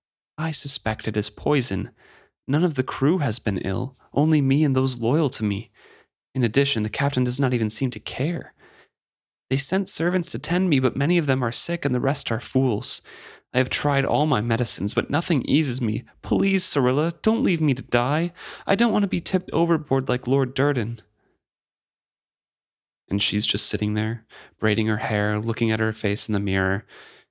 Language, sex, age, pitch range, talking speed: English, male, 30-49, 105-145 Hz, 195 wpm